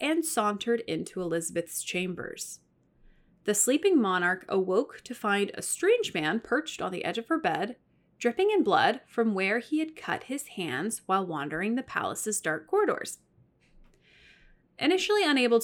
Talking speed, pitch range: 150 wpm, 185-275 Hz